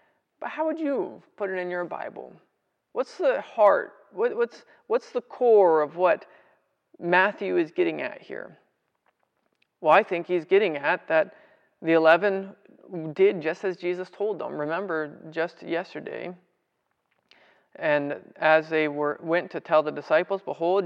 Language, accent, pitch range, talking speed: English, American, 160-225 Hz, 145 wpm